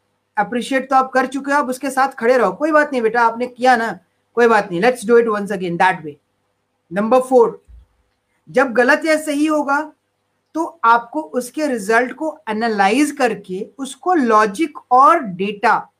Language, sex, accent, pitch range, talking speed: Hindi, female, native, 210-265 Hz, 175 wpm